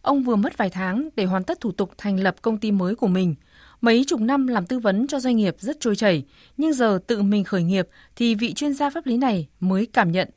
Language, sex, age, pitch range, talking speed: Vietnamese, female, 20-39, 190-250 Hz, 260 wpm